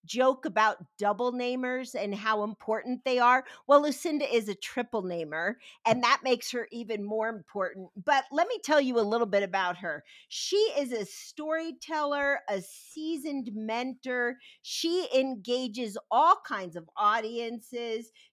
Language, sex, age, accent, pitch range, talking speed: English, female, 50-69, American, 210-295 Hz, 145 wpm